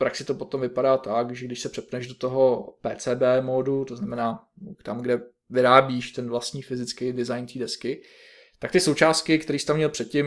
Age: 20-39